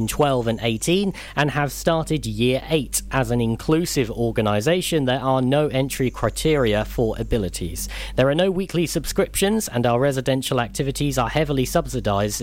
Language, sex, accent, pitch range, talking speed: English, male, British, 110-145 Hz, 150 wpm